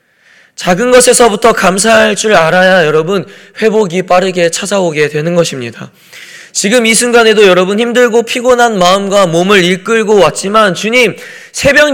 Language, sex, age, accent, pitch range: Korean, male, 20-39, native, 195-255 Hz